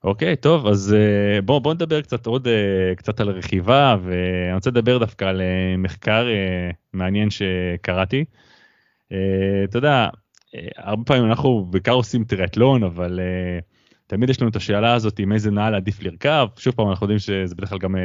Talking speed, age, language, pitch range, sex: 160 wpm, 20-39, Hebrew, 95-115 Hz, male